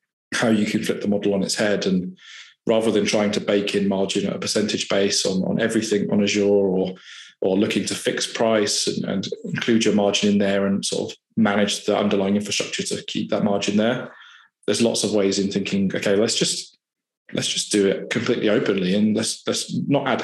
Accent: British